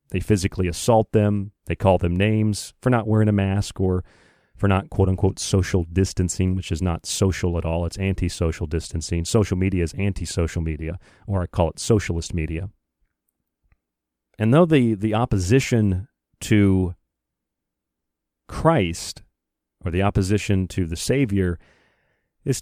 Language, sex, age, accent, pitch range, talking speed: English, male, 40-59, American, 85-110 Hz, 140 wpm